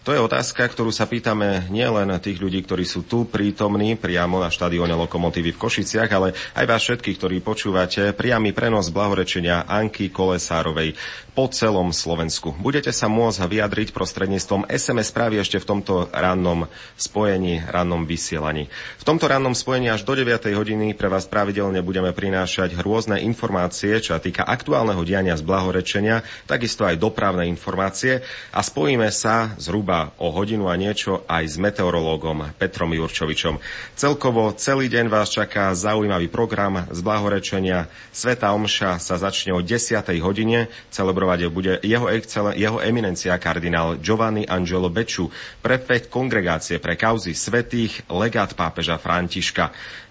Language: Slovak